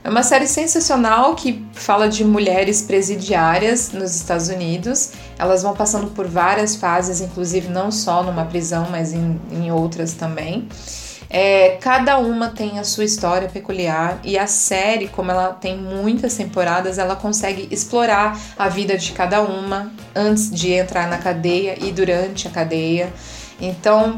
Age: 20-39